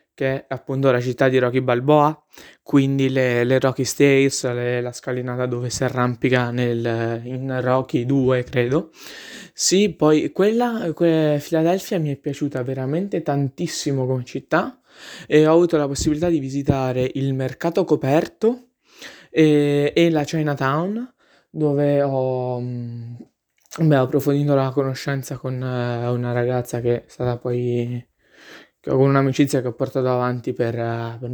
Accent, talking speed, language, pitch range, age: native, 130 wpm, Italian, 130-155 Hz, 20-39